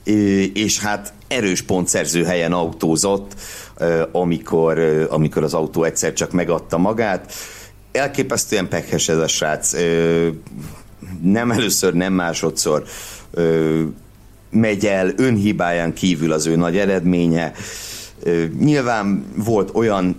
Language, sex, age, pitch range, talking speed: Hungarian, male, 60-79, 80-100 Hz, 100 wpm